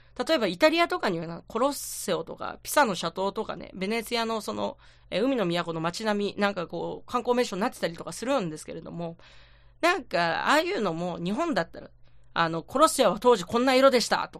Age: 40-59